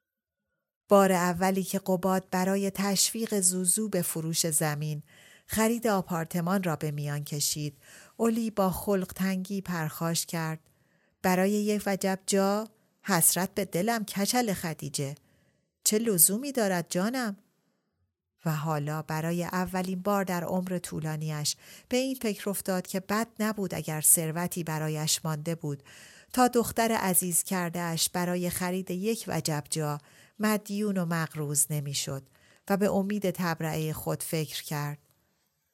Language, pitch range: Persian, 155-200 Hz